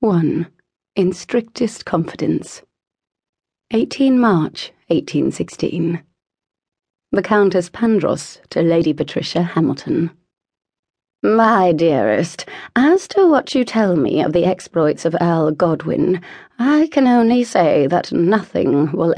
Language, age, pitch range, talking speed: English, 30-49, 170-240 Hz, 110 wpm